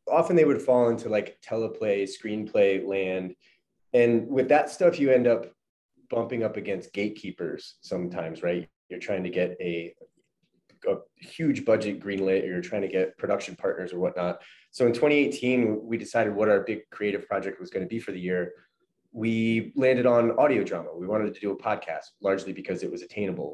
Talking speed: 185 wpm